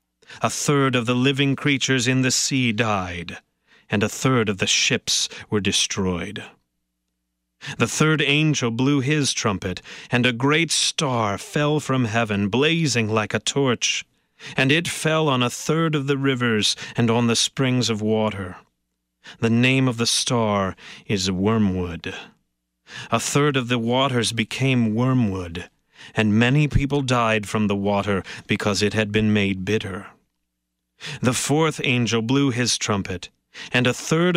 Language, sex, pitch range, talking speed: English, male, 100-140 Hz, 150 wpm